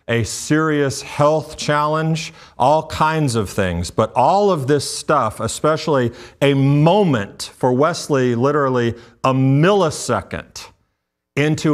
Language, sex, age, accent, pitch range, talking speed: English, male, 40-59, American, 115-150 Hz, 110 wpm